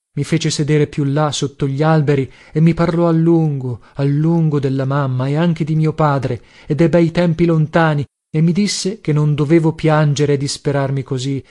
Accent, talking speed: native, 195 wpm